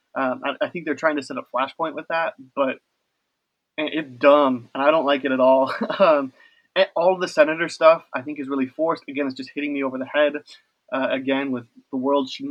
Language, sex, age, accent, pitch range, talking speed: English, male, 20-39, American, 135-205 Hz, 230 wpm